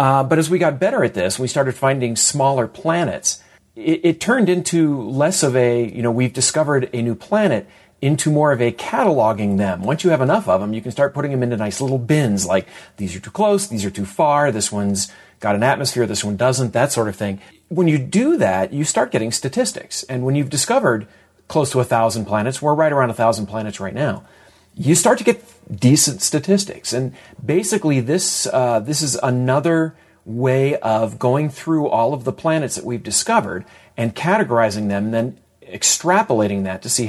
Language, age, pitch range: Hungarian, 40-59, 110-150 Hz